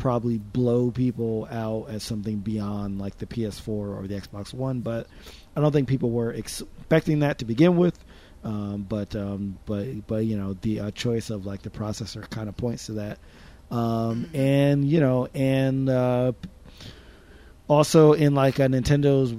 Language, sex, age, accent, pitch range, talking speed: English, male, 30-49, American, 105-130 Hz, 170 wpm